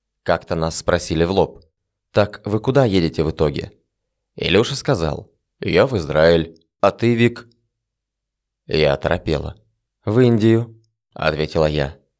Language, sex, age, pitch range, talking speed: Russian, male, 20-39, 80-110 Hz, 125 wpm